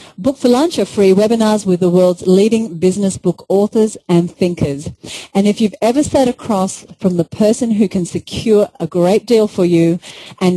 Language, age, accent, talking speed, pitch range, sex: English, 40-59, Australian, 185 wpm, 170-210 Hz, female